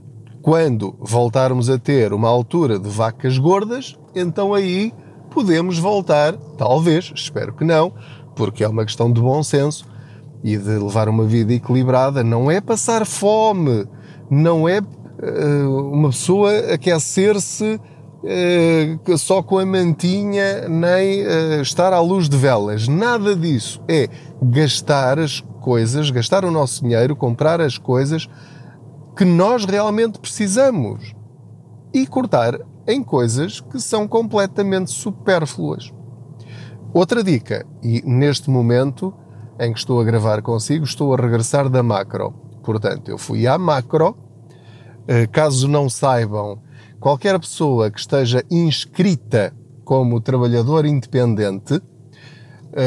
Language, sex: Portuguese, male